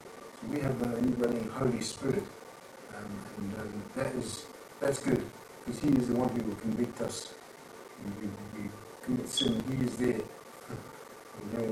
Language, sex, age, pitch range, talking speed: English, male, 60-79, 110-130 Hz, 165 wpm